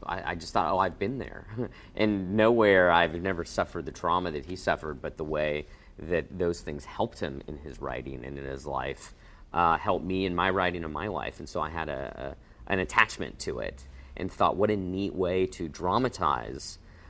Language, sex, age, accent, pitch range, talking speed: English, male, 40-59, American, 80-95 Hz, 205 wpm